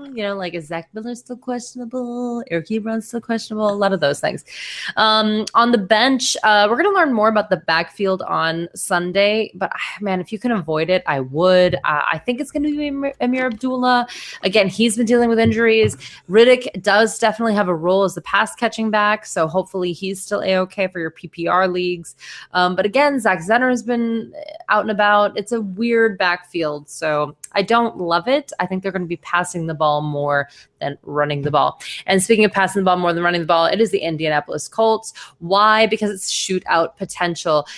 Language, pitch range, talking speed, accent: English, 175-235 Hz, 205 wpm, American